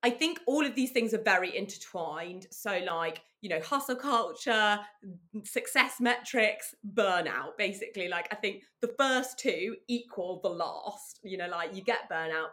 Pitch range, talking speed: 165-235 Hz, 165 wpm